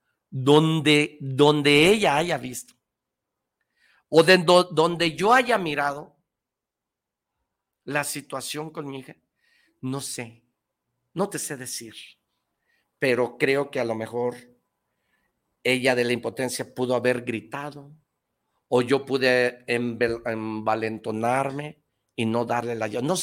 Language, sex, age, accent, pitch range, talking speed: Spanish, male, 50-69, Mexican, 120-155 Hz, 120 wpm